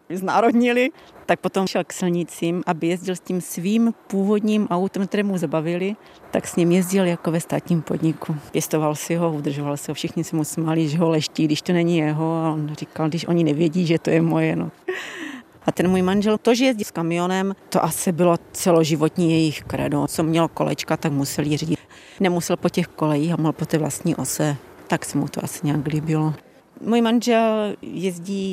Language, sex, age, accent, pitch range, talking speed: Czech, female, 40-59, native, 160-195 Hz, 200 wpm